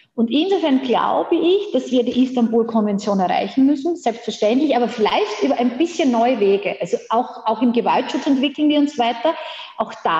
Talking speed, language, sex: 170 wpm, German, female